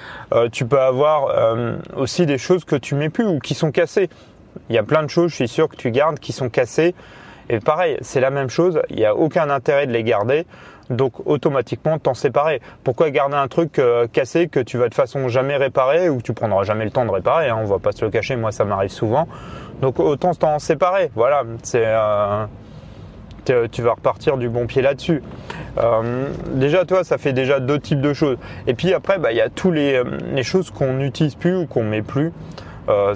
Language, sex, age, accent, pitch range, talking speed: French, male, 30-49, French, 120-155 Hz, 230 wpm